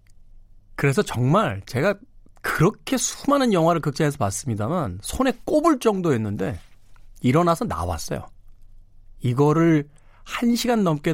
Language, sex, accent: Korean, male, native